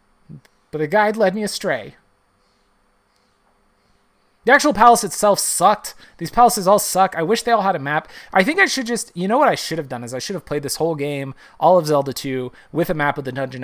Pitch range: 130-180 Hz